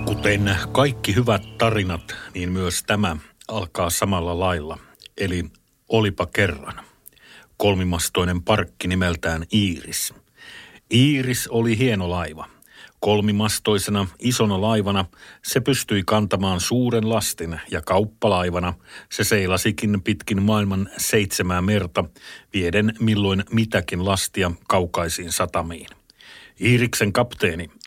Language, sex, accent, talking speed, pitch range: Finnish, male, native, 95 wpm, 90-110 Hz